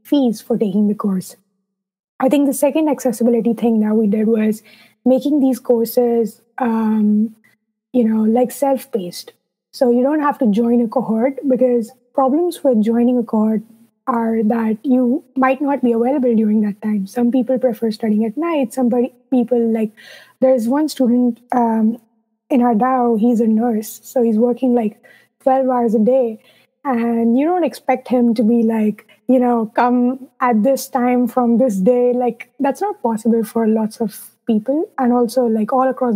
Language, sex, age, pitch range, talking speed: English, female, 20-39, 220-255 Hz, 175 wpm